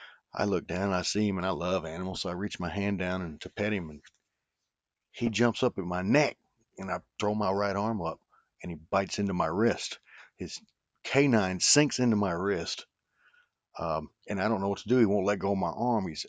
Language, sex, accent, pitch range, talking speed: English, male, American, 90-110 Hz, 230 wpm